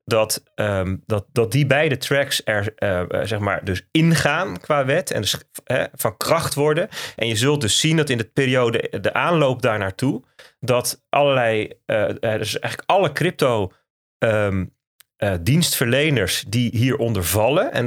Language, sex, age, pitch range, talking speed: Dutch, male, 30-49, 110-135 Hz, 160 wpm